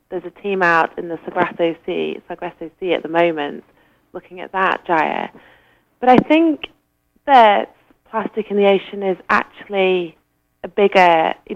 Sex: female